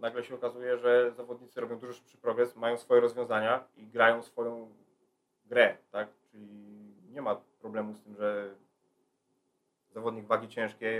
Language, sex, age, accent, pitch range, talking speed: Polish, male, 30-49, native, 115-130 Hz, 145 wpm